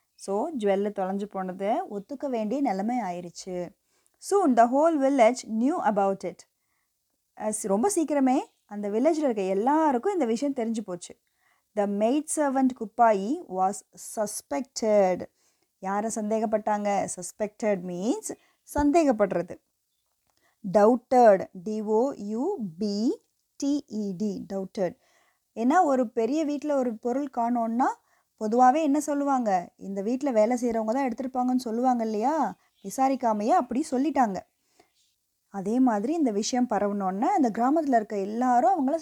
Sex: female